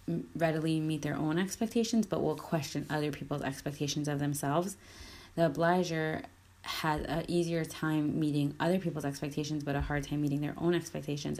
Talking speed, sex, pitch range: 165 wpm, female, 145-170 Hz